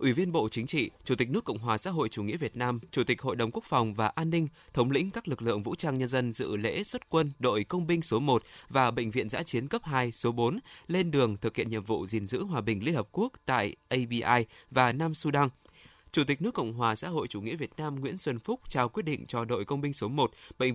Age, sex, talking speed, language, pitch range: 20-39, male, 270 wpm, Vietnamese, 115-165 Hz